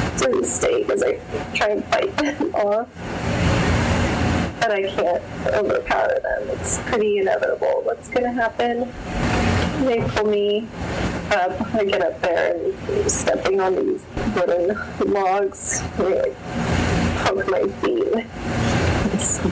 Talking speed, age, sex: 125 wpm, 20-39, female